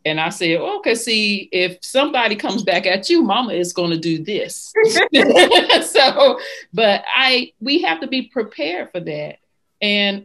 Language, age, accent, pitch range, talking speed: English, 40-59, American, 175-220 Hz, 165 wpm